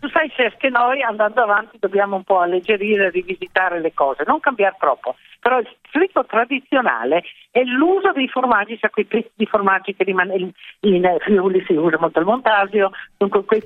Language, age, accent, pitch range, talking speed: Italian, 50-69, native, 185-235 Hz, 190 wpm